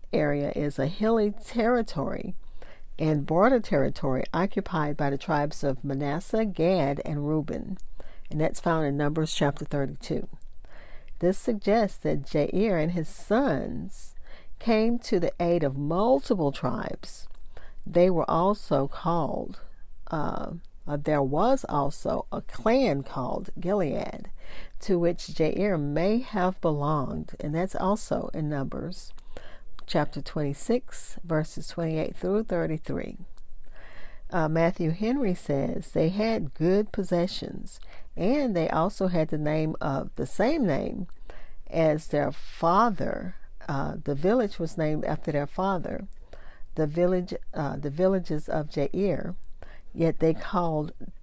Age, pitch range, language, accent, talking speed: 50-69, 150-195 Hz, English, American, 130 wpm